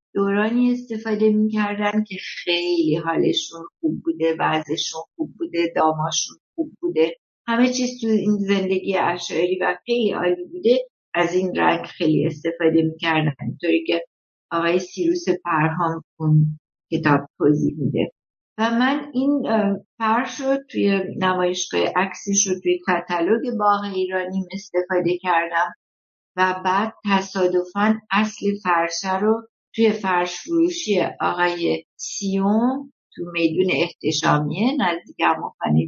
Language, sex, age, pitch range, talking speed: Persian, female, 60-79, 170-215 Hz, 110 wpm